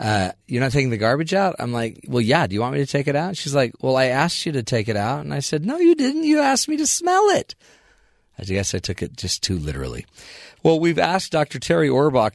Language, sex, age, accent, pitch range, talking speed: English, male, 40-59, American, 110-140 Hz, 265 wpm